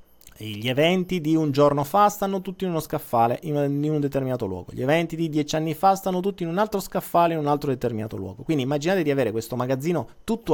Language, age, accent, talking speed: Italian, 30-49, native, 220 wpm